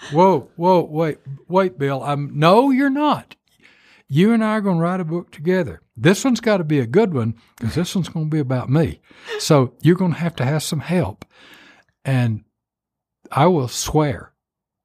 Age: 60-79